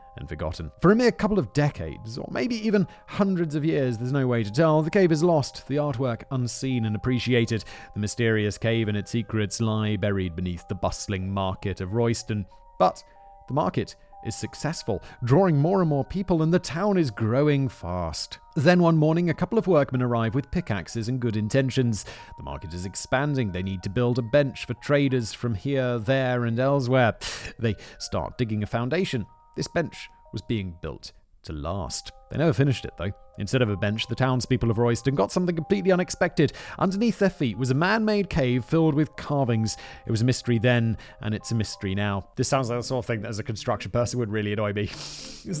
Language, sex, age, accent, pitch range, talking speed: English, male, 40-59, British, 110-165 Hz, 200 wpm